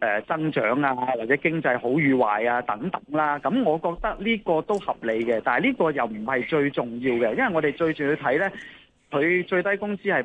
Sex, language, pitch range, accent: male, Chinese, 130-185 Hz, native